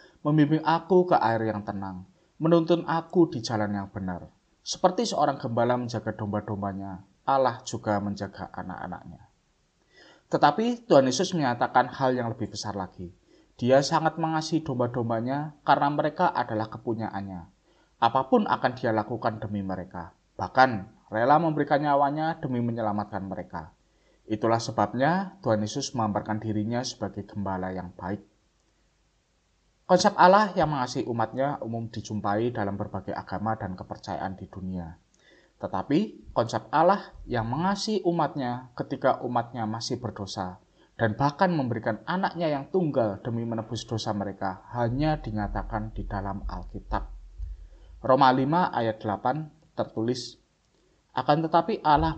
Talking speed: 125 wpm